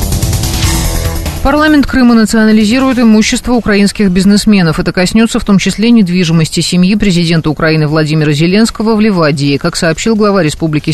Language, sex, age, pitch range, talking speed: Russian, female, 30-49, 155-215 Hz, 125 wpm